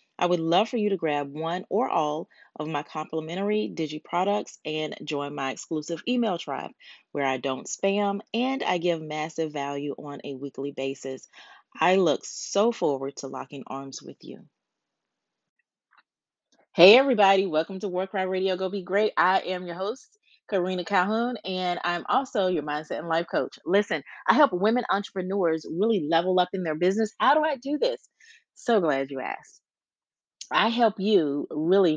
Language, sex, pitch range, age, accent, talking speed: English, female, 145-195 Hz, 30-49, American, 170 wpm